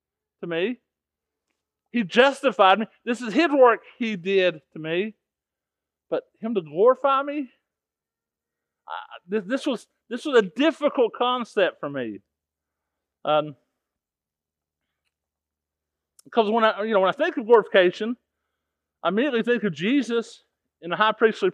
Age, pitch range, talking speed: 40-59, 170-235 Hz, 135 wpm